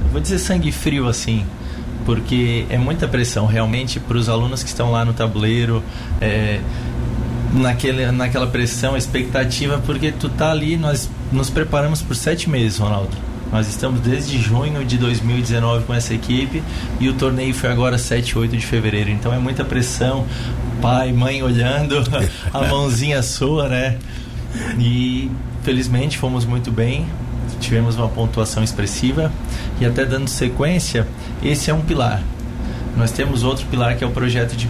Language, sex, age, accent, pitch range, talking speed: Portuguese, male, 20-39, Brazilian, 115-135 Hz, 155 wpm